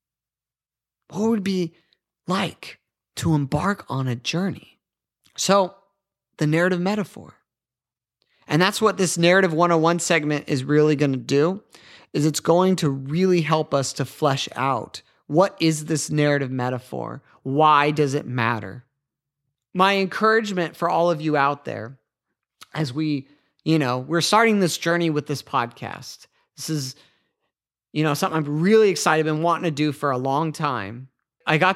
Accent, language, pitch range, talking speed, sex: American, English, 145-185 Hz, 155 wpm, male